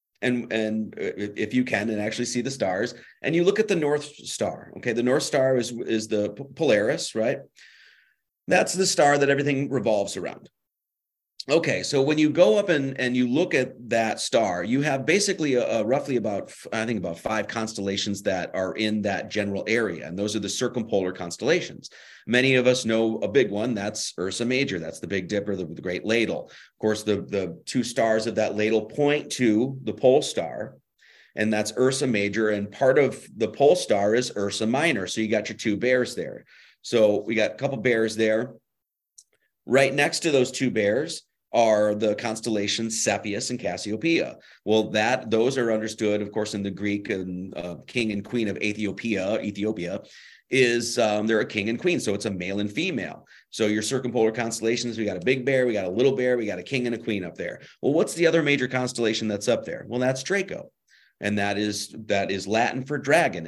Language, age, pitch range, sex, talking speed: English, 30-49, 105-130 Hz, male, 205 wpm